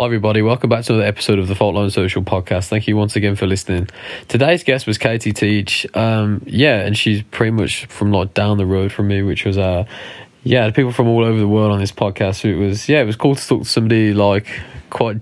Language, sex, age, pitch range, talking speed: English, male, 20-39, 100-115 Hz, 250 wpm